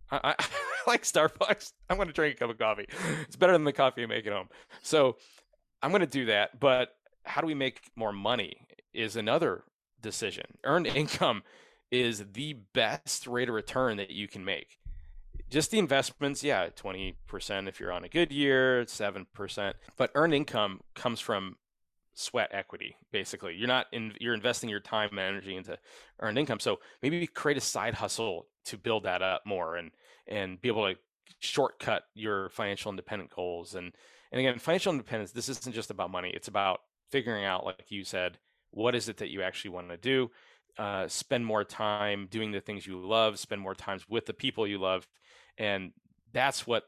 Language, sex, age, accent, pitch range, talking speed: English, male, 30-49, American, 95-130 Hz, 190 wpm